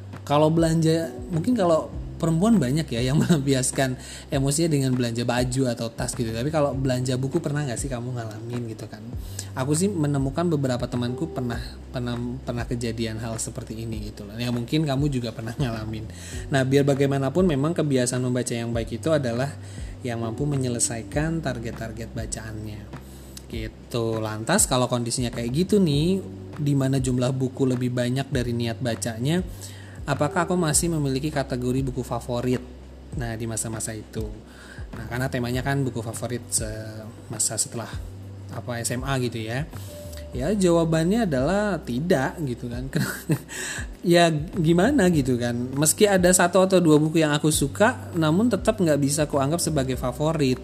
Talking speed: 150 wpm